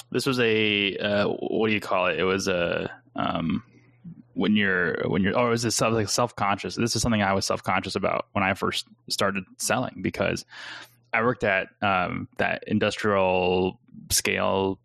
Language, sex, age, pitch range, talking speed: English, male, 10-29, 95-115 Hz, 170 wpm